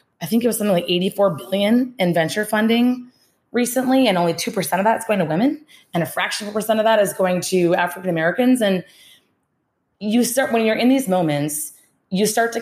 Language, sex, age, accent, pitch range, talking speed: English, female, 20-39, American, 180-230 Hz, 210 wpm